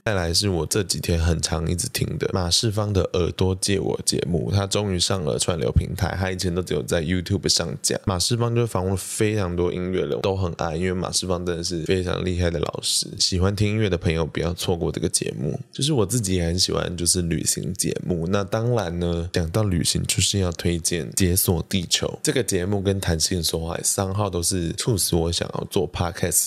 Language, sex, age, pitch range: Chinese, male, 20-39, 85-100 Hz